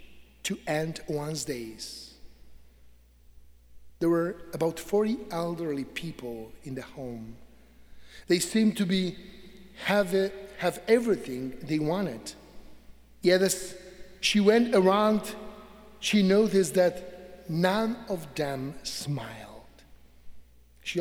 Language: English